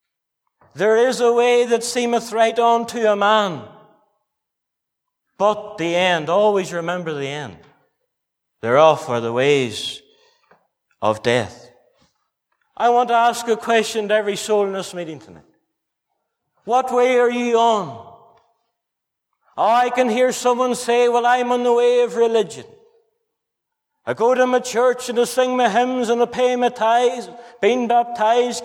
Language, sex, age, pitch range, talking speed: English, male, 60-79, 195-245 Hz, 150 wpm